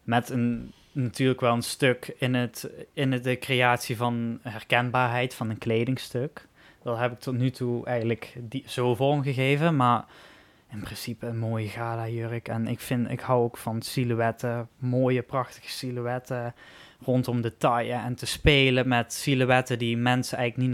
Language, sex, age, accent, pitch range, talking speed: Dutch, male, 20-39, Dutch, 120-130 Hz, 165 wpm